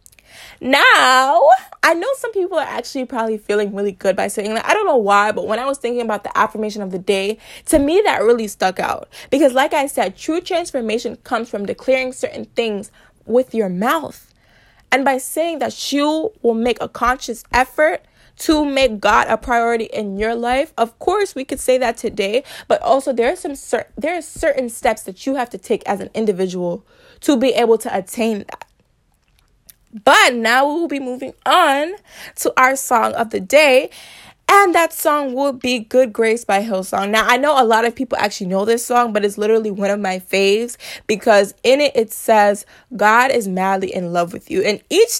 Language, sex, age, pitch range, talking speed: English, female, 20-39, 210-275 Hz, 195 wpm